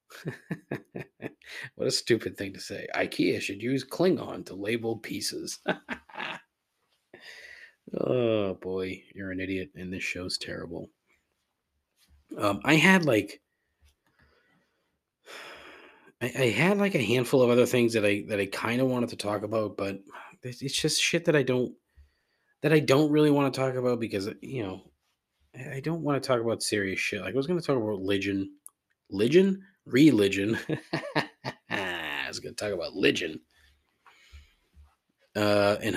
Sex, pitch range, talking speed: male, 95-125 Hz, 150 wpm